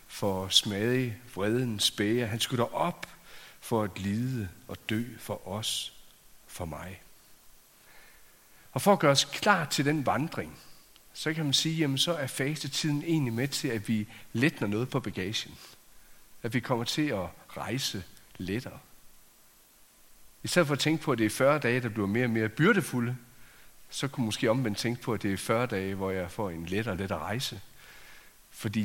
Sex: male